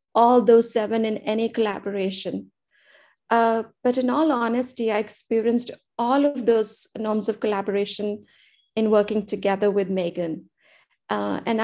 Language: English